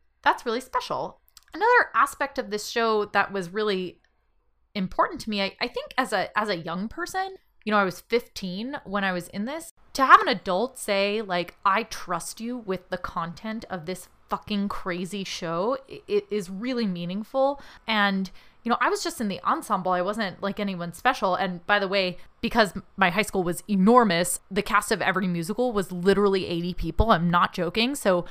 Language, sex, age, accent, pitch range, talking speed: English, female, 20-39, American, 185-235 Hz, 195 wpm